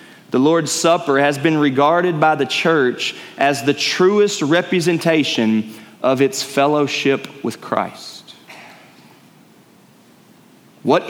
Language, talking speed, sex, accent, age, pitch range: English, 105 wpm, male, American, 30-49, 140-195 Hz